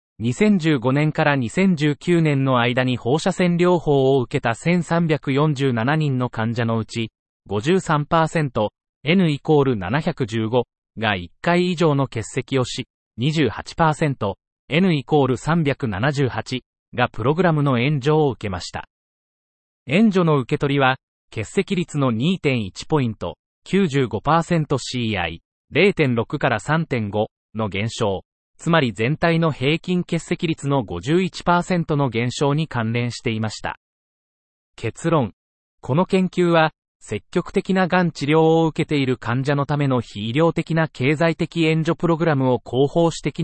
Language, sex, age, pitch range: Japanese, male, 30-49, 120-165 Hz